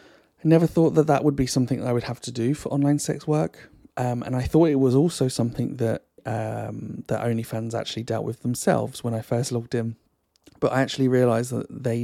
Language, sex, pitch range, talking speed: English, male, 110-130 Hz, 220 wpm